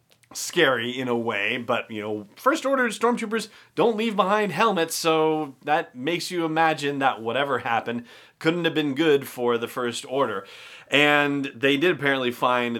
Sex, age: male, 30-49